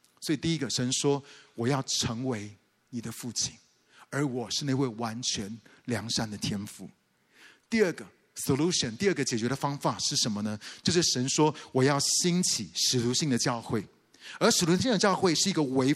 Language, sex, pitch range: Chinese, male, 125-180 Hz